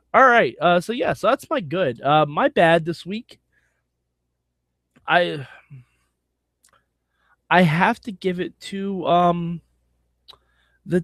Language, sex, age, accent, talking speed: English, male, 20-39, American, 125 wpm